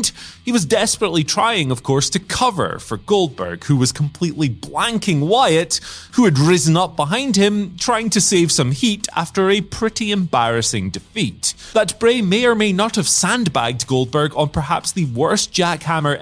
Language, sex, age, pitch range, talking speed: English, male, 30-49, 125-205 Hz, 165 wpm